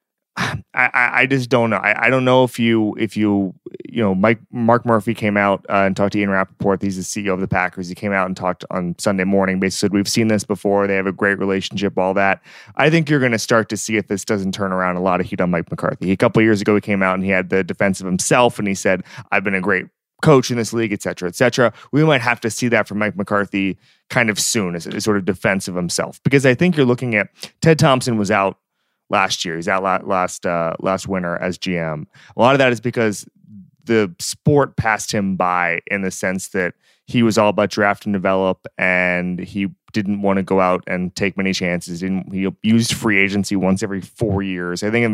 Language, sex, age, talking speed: English, male, 20-39, 250 wpm